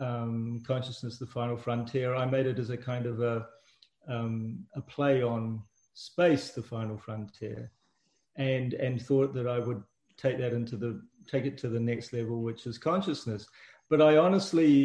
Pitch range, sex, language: 115-140 Hz, male, English